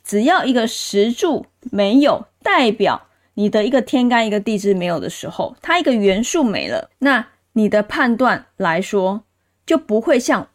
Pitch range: 205-275 Hz